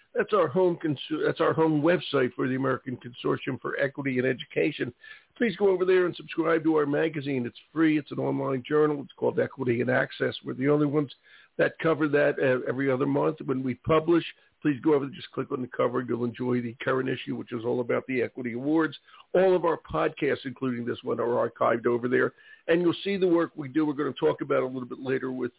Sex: male